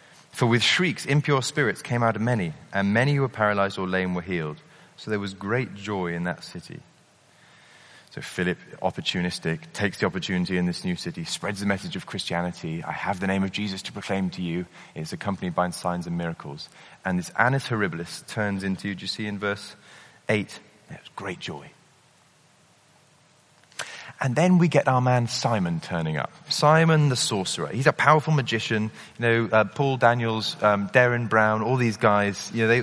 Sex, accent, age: male, British, 30-49